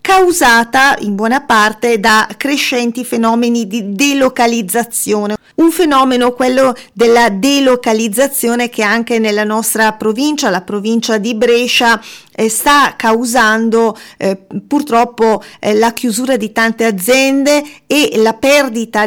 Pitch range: 220-260 Hz